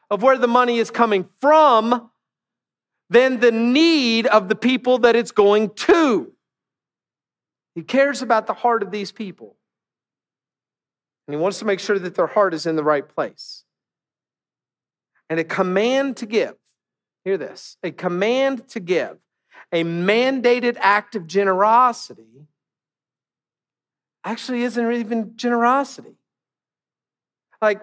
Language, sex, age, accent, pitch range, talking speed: English, male, 50-69, American, 215-275 Hz, 130 wpm